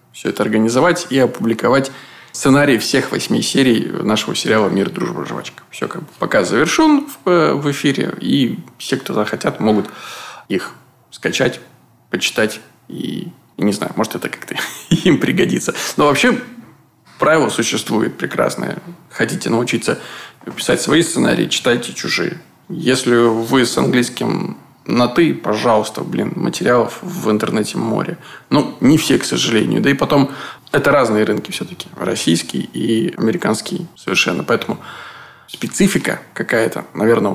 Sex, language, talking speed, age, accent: male, Russian, 130 wpm, 20-39, native